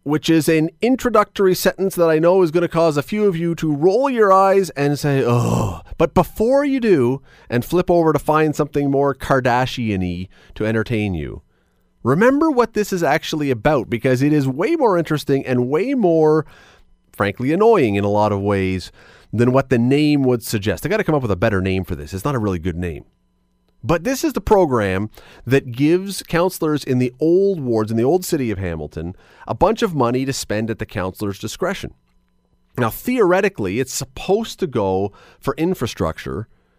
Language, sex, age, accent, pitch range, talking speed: English, male, 30-49, American, 105-160 Hz, 195 wpm